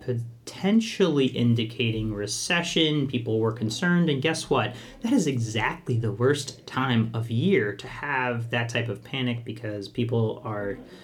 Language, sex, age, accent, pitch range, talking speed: English, male, 30-49, American, 110-130 Hz, 140 wpm